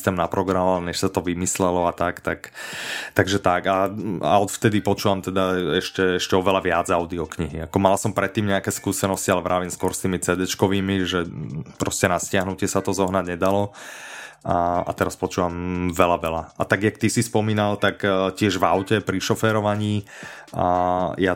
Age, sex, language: 30-49, male, Slovak